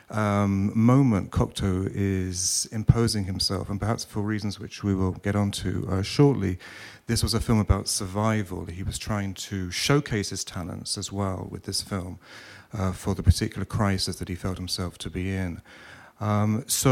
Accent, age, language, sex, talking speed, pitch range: British, 40-59, English, male, 175 wpm, 95-115 Hz